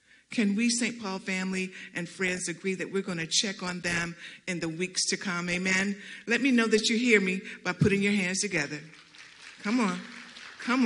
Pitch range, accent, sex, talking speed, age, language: 155-195 Hz, American, female, 200 wpm, 50-69, English